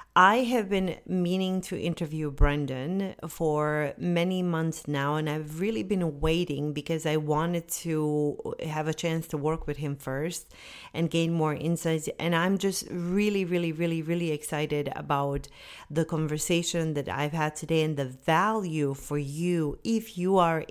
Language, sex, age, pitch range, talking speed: English, female, 40-59, 150-175 Hz, 160 wpm